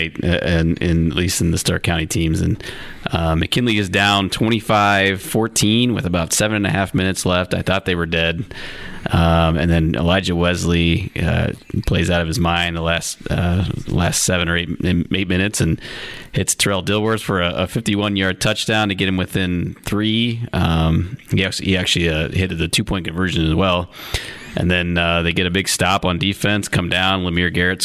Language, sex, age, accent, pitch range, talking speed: English, male, 30-49, American, 85-100 Hz, 195 wpm